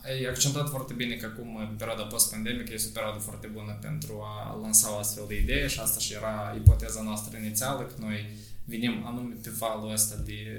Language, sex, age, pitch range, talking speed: Romanian, male, 20-39, 105-120 Hz, 205 wpm